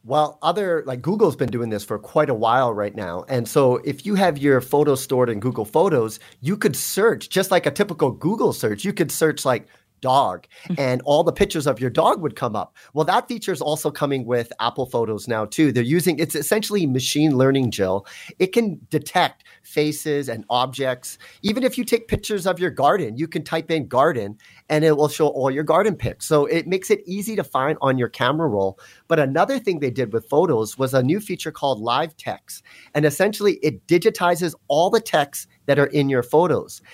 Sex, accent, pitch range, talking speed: male, American, 130-180 Hz, 215 wpm